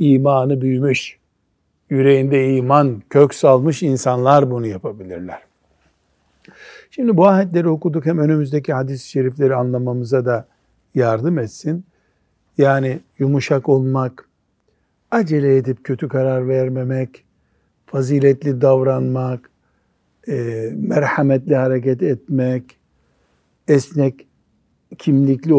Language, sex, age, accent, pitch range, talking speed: Turkish, male, 60-79, native, 125-150 Hz, 85 wpm